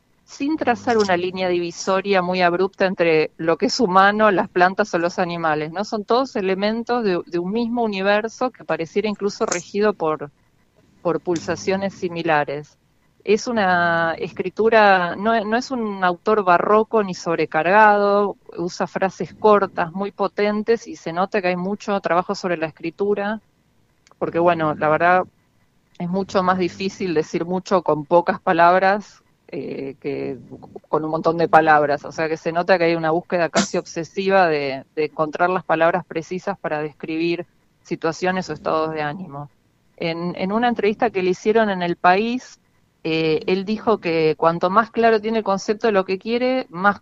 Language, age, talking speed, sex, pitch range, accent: Spanish, 40-59, 165 wpm, female, 170-210 Hz, Argentinian